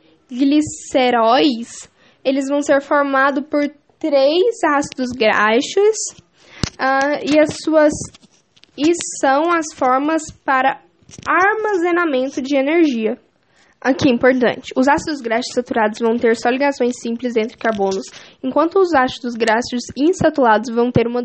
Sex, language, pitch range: female, English, 245-295 Hz